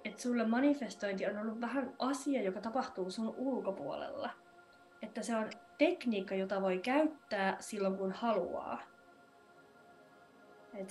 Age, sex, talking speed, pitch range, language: 20-39, female, 115 wpm, 195-245 Hz, Finnish